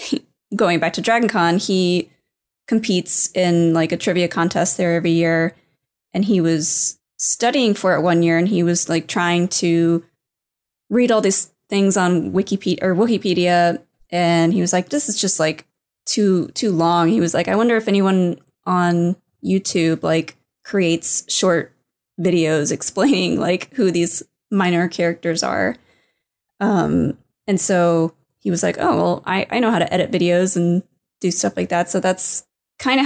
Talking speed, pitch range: 165 wpm, 170-195 Hz